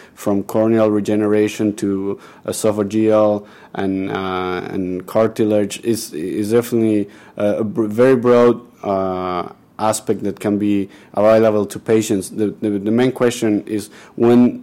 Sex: male